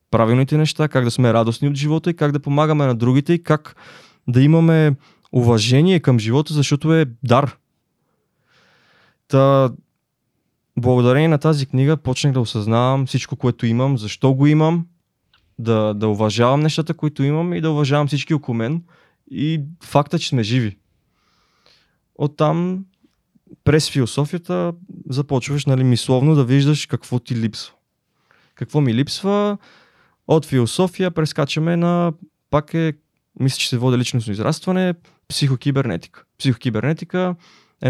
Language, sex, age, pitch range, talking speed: Bulgarian, male, 20-39, 125-160 Hz, 135 wpm